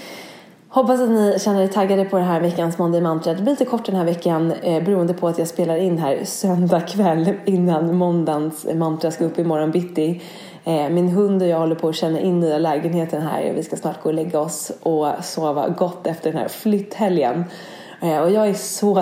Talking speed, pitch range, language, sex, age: 220 wpm, 165-190 Hz, English, female, 20-39